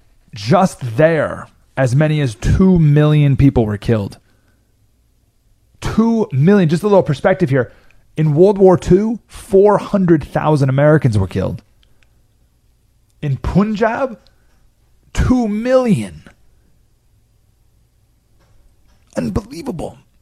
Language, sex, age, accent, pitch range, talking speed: English, male, 30-49, American, 115-170 Hz, 90 wpm